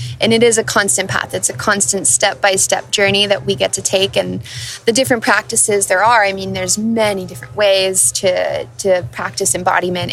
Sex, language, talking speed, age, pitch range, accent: female, English, 190 wpm, 20-39, 185-220 Hz, American